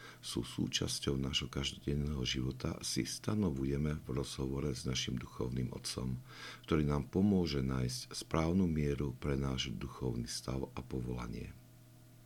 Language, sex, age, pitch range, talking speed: Slovak, male, 60-79, 65-90 Hz, 120 wpm